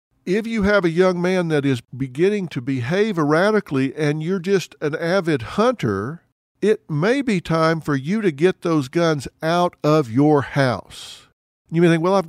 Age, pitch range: 50-69, 120-165 Hz